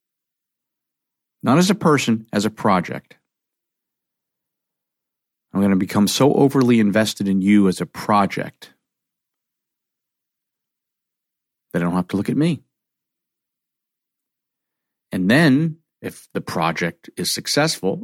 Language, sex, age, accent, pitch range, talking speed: English, male, 50-69, American, 100-140 Hz, 115 wpm